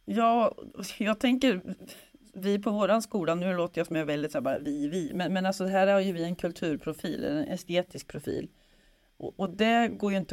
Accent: native